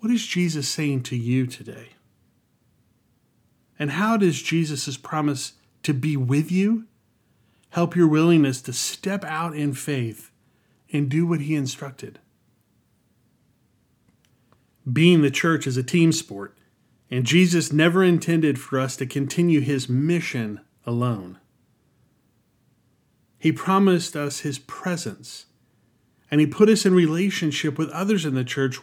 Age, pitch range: 30-49, 120-160 Hz